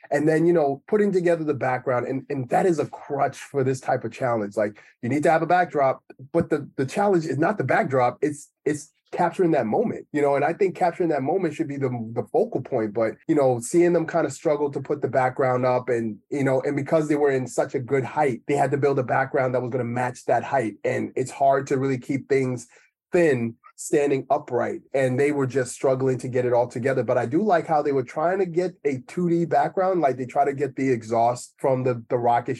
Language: English